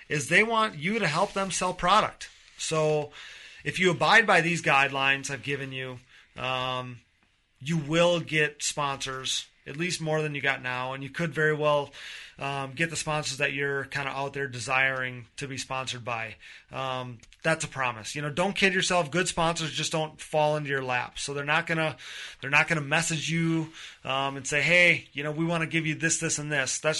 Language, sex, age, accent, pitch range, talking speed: English, male, 30-49, American, 135-165 Hz, 205 wpm